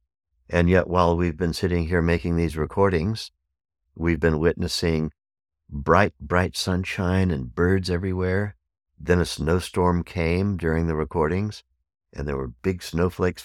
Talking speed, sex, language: 140 wpm, male, English